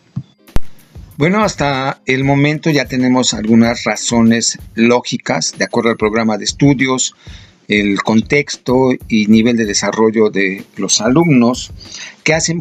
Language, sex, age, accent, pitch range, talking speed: Spanish, male, 50-69, Mexican, 115-150 Hz, 125 wpm